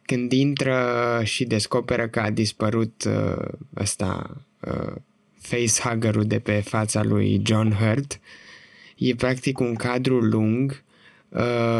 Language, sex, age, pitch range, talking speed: Romanian, male, 20-39, 110-130 Hz, 110 wpm